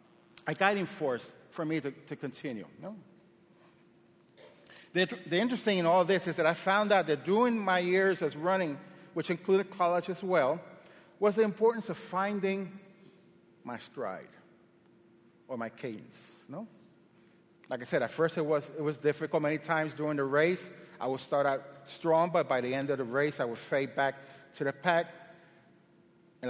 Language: English